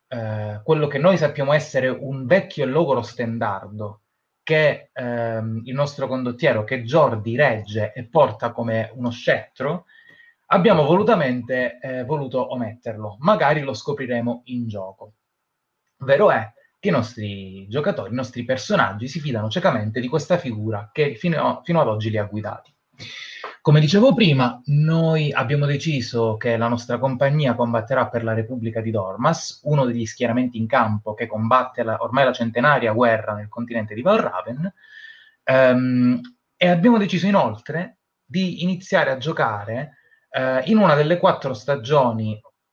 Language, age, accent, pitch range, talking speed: Italian, 20-39, native, 115-150 Hz, 145 wpm